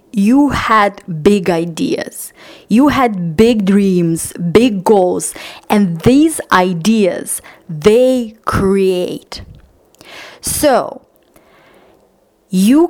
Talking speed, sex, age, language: 80 wpm, female, 30-49, English